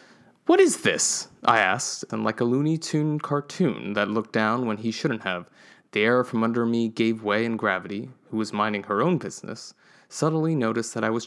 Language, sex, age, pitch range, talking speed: English, male, 20-39, 110-150 Hz, 200 wpm